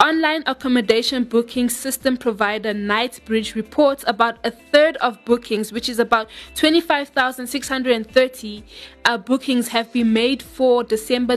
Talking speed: 120 wpm